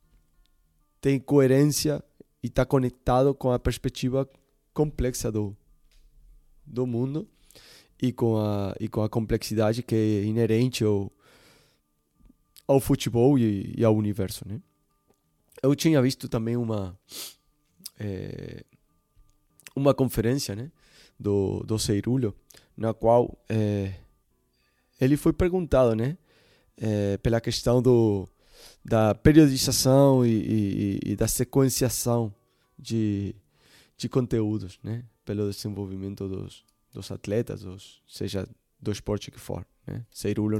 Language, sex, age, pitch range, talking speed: Portuguese, male, 20-39, 100-125 Hz, 110 wpm